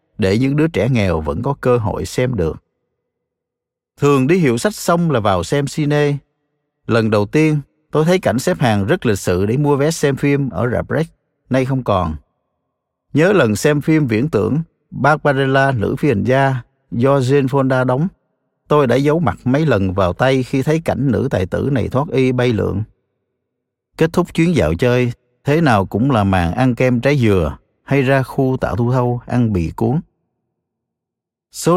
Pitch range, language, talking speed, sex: 110-145 Hz, Vietnamese, 185 wpm, male